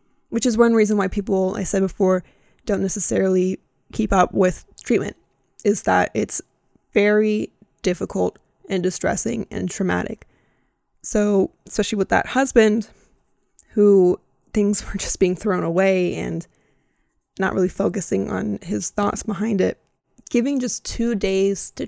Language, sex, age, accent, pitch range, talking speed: English, female, 20-39, American, 185-215 Hz, 135 wpm